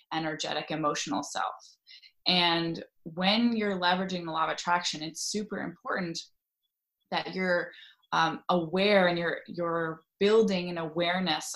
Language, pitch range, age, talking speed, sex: English, 165-190 Hz, 20-39, 125 wpm, female